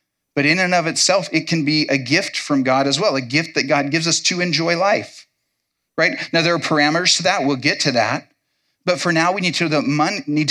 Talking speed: 225 wpm